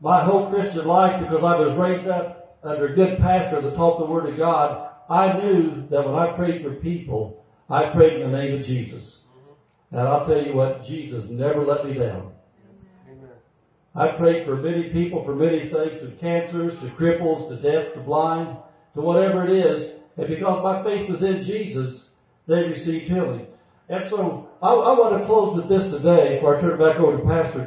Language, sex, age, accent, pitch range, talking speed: English, male, 50-69, American, 145-185 Hz, 200 wpm